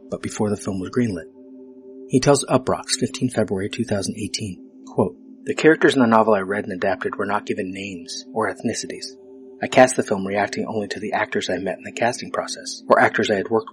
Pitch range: 100-130 Hz